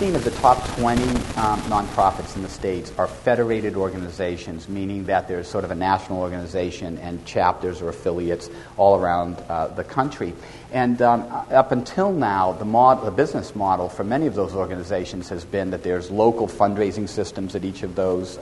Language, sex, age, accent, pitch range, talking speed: English, male, 50-69, American, 90-115 Hz, 180 wpm